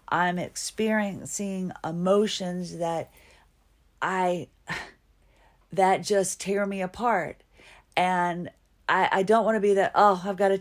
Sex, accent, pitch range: female, American, 175-205 Hz